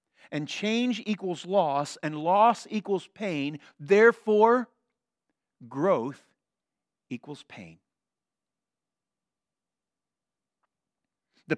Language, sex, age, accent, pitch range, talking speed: English, male, 50-69, American, 200-265 Hz, 65 wpm